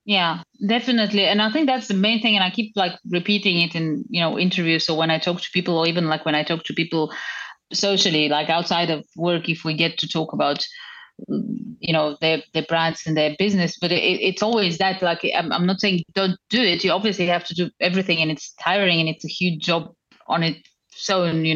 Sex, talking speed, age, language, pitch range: female, 230 wpm, 30-49, English, 165-195 Hz